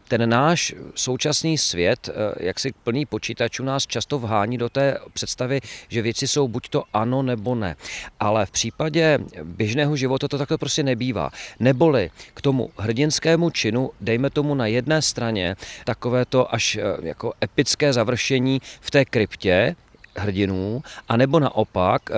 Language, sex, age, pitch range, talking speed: Czech, male, 40-59, 115-145 Hz, 140 wpm